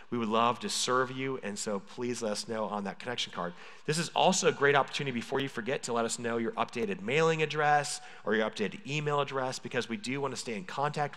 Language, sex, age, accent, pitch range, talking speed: English, male, 30-49, American, 120-145 Hz, 240 wpm